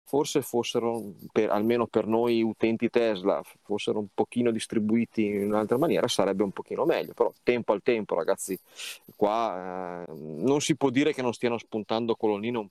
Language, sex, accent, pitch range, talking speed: Italian, male, native, 105-120 Hz, 170 wpm